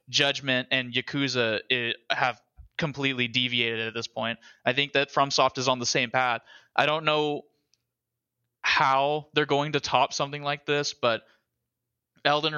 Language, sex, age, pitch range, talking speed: English, male, 20-39, 125-150 Hz, 155 wpm